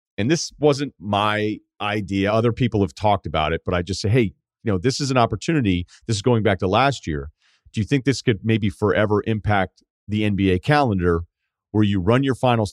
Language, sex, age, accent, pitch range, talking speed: English, male, 40-59, American, 90-120 Hz, 210 wpm